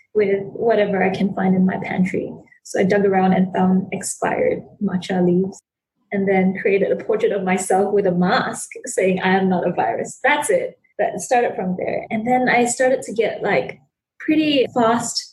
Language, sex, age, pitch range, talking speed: English, female, 20-39, 185-230 Hz, 190 wpm